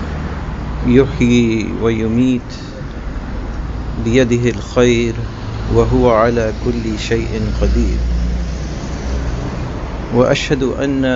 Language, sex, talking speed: English, male, 60 wpm